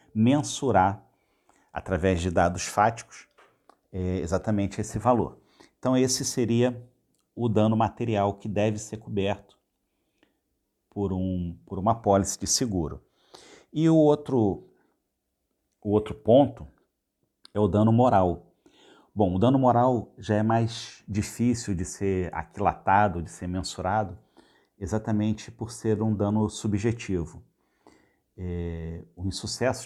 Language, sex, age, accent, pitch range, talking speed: Portuguese, male, 50-69, Brazilian, 90-110 Hz, 115 wpm